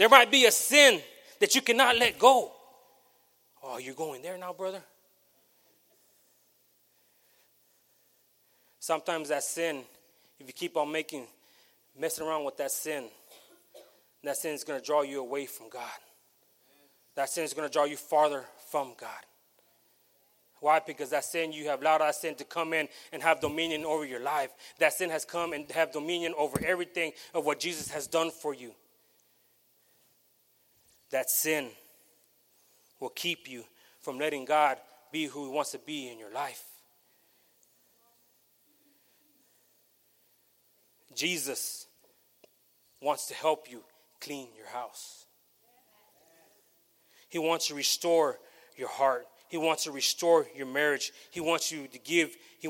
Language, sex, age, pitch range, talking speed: English, male, 30-49, 145-170 Hz, 145 wpm